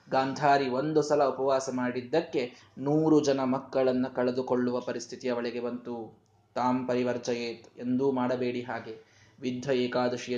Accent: native